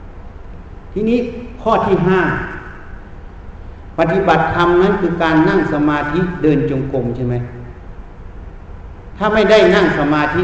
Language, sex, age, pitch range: Thai, male, 60-79, 95-150 Hz